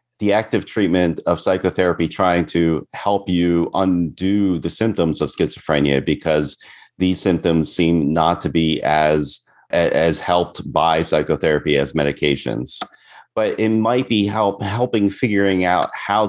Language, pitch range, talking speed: English, 80-95 Hz, 135 wpm